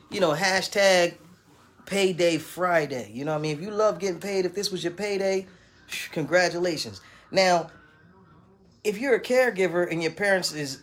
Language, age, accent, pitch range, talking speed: English, 30-49, American, 145-190 Hz, 170 wpm